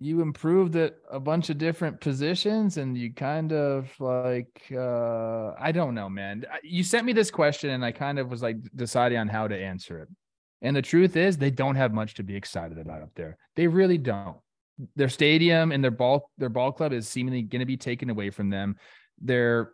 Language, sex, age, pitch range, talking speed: English, male, 20-39, 120-155 Hz, 215 wpm